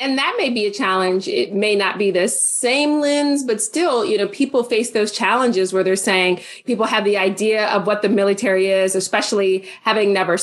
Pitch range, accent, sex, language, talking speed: 190-230 Hz, American, female, English, 205 wpm